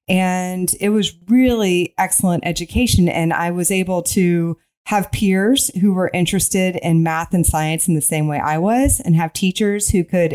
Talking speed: 180 wpm